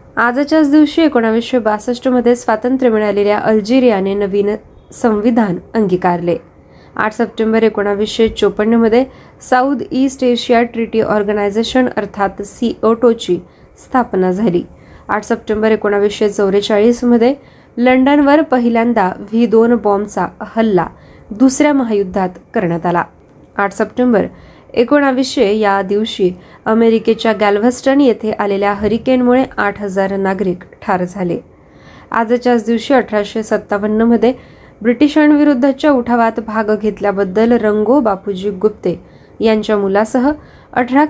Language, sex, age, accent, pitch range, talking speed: Marathi, female, 20-39, native, 205-245 Hz, 95 wpm